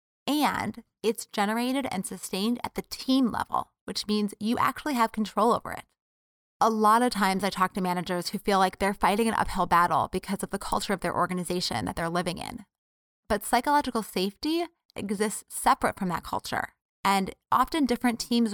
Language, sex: English, female